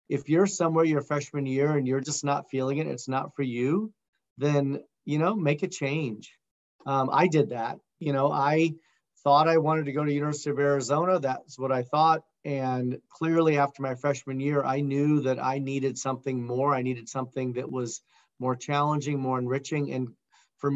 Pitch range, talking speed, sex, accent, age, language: 130-150 Hz, 195 wpm, male, American, 40-59, English